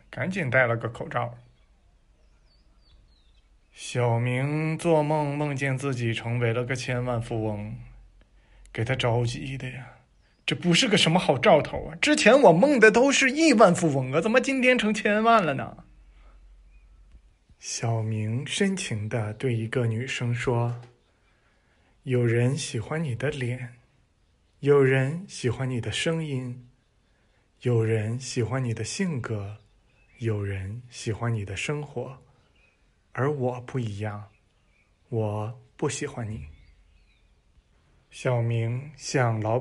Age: 20-39